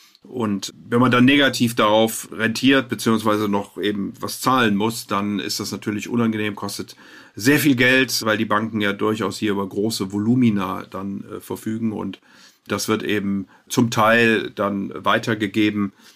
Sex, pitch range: male, 100-115 Hz